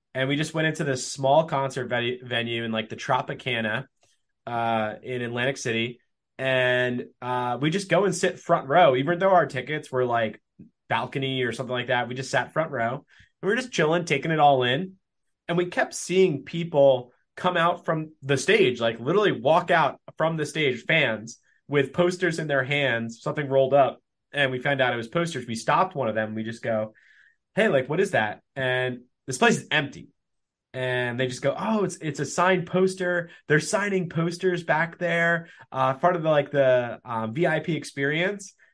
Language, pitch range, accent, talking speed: English, 125-160 Hz, American, 195 wpm